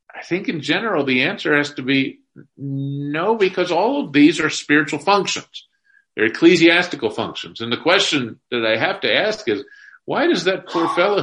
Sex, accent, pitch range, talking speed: male, American, 135-215 Hz, 180 wpm